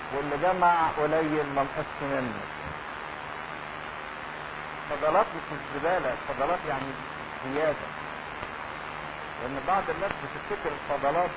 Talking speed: 90 wpm